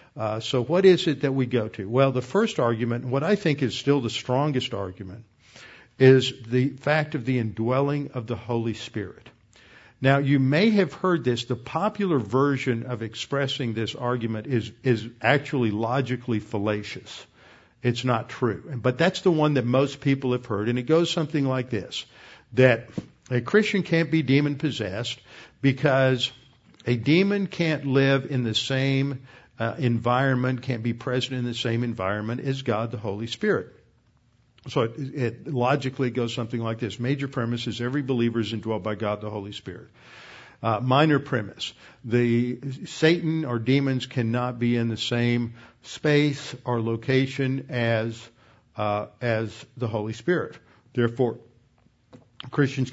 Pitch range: 115-140 Hz